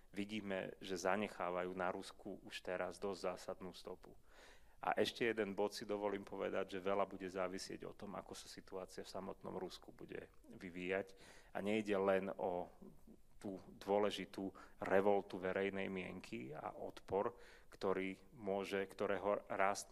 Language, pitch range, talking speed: Slovak, 95-105 Hz, 140 wpm